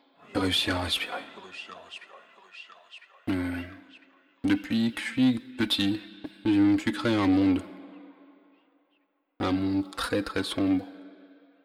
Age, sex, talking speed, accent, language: 40-59, male, 110 wpm, French, French